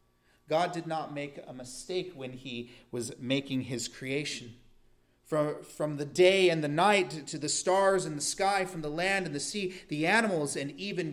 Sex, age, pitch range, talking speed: male, 30-49, 120-165 Hz, 190 wpm